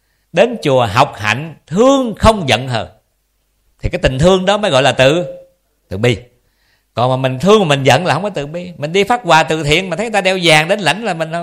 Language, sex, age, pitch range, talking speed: Vietnamese, male, 50-69, 125-190 Hz, 245 wpm